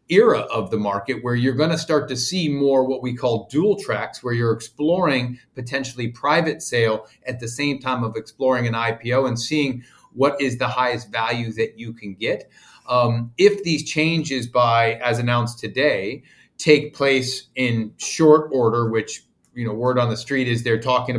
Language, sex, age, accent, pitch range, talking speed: English, male, 40-59, American, 115-135 Hz, 185 wpm